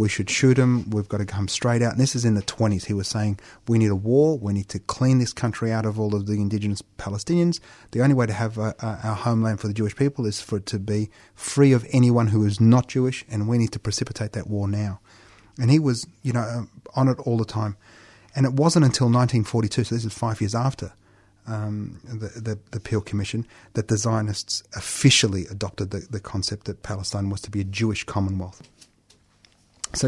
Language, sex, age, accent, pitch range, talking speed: English, male, 30-49, Australian, 105-125 Hz, 220 wpm